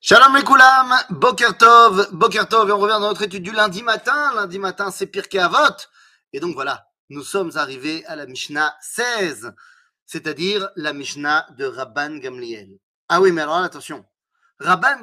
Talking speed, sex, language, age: 165 wpm, male, French, 30-49